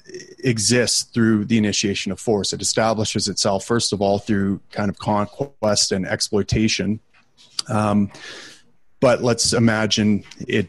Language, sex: English, male